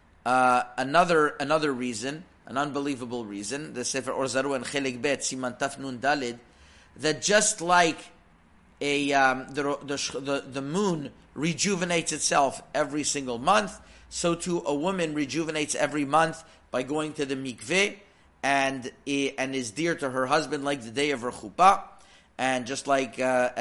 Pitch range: 130-160 Hz